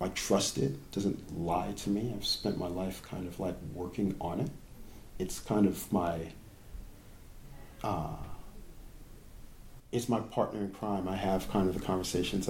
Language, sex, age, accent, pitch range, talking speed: English, male, 40-59, American, 100-140 Hz, 165 wpm